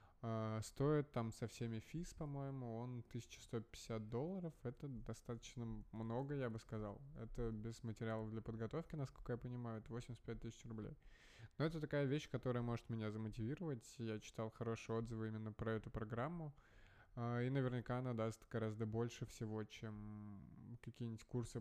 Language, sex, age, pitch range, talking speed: Russian, male, 20-39, 110-120 Hz, 155 wpm